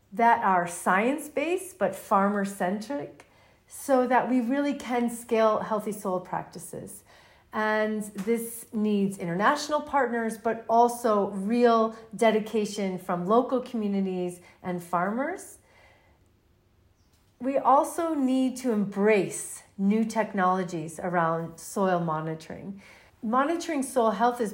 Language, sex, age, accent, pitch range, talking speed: English, female, 40-59, American, 195-250 Hz, 105 wpm